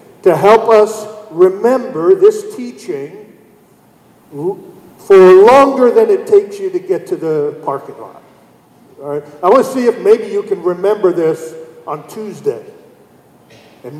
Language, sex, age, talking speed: English, male, 50-69, 135 wpm